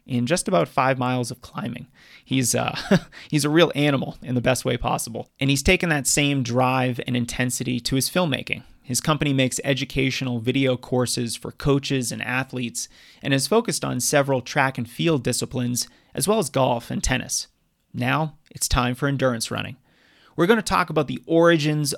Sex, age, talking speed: male, 30-49, 180 wpm